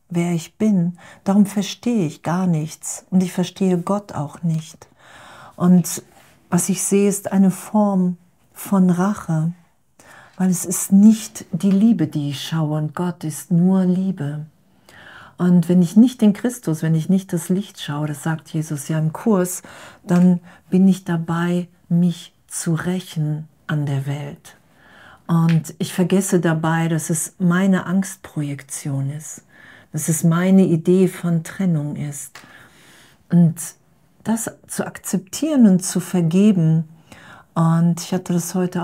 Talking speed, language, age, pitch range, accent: 145 wpm, German, 50-69, 160-185 Hz, German